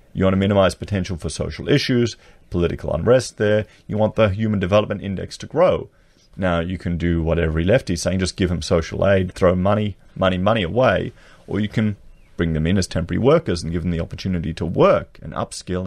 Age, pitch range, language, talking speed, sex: 30-49, 85-105 Hz, English, 210 wpm, male